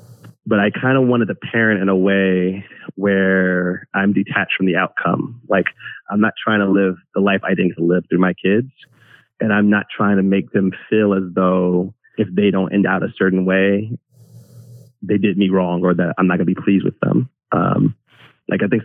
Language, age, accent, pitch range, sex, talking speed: English, 30-49, American, 95-110 Hz, male, 210 wpm